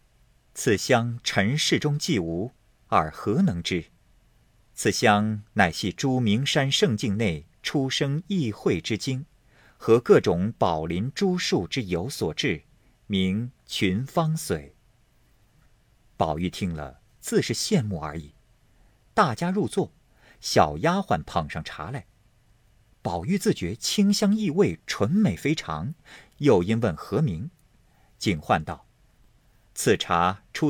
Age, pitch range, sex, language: 50-69, 100-165 Hz, male, Chinese